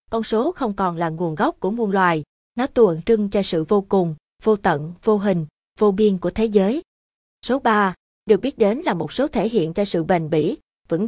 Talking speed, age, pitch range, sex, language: 220 wpm, 20-39, 180-235 Hz, female, Vietnamese